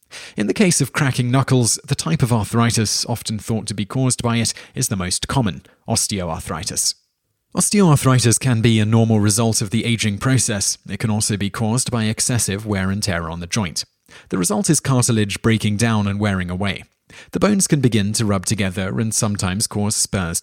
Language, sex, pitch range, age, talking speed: English, male, 105-130 Hz, 30-49, 190 wpm